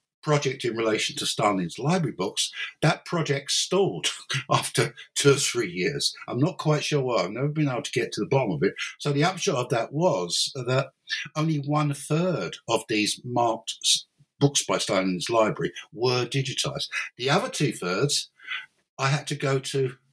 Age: 60-79